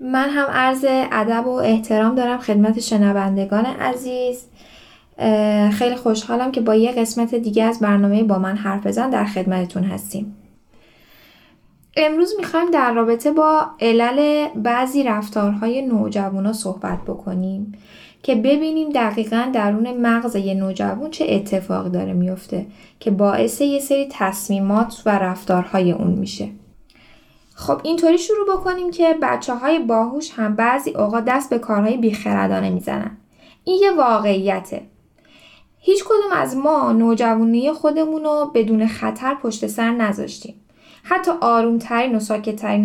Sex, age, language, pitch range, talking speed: female, 10-29, Persian, 210-280 Hz, 125 wpm